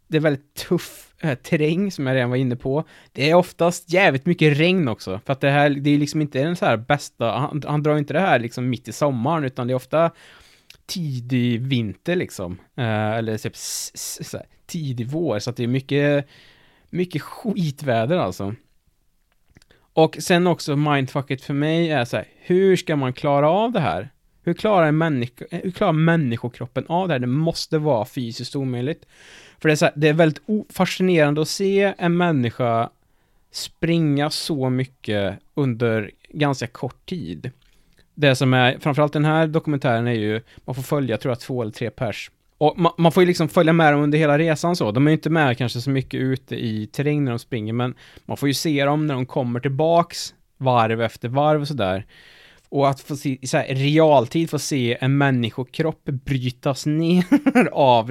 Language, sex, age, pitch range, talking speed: English, male, 20-39, 125-160 Hz, 185 wpm